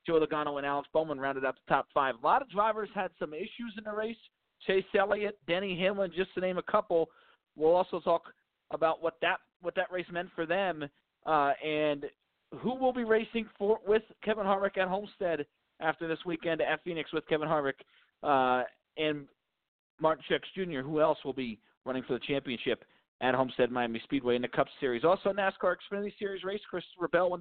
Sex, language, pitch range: male, English, 145-195 Hz